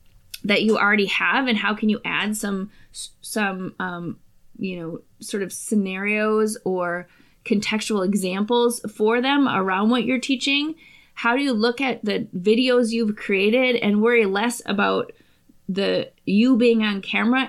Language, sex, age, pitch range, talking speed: English, female, 20-39, 190-235 Hz, 150 wpm